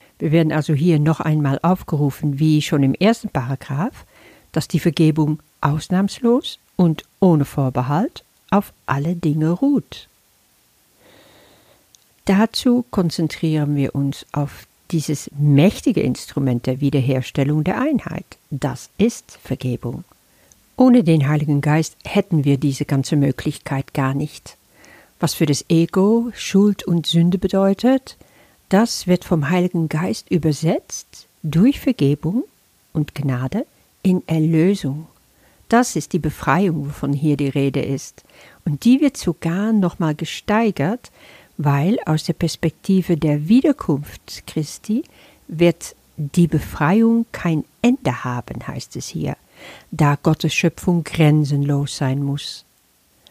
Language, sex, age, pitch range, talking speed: German, female, 60-79, 145-185 Hz, 120 wpm